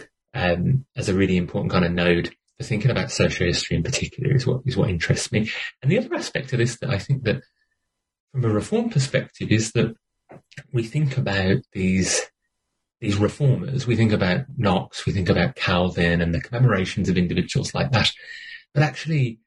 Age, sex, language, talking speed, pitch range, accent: 30-49, male, English, 185 wpm, 95-135 Hz, British